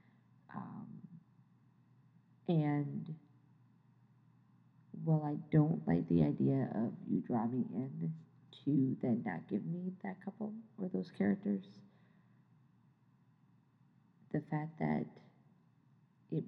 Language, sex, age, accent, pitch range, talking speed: English, female, 40-59, American, 125-190 Hz, 100 wpm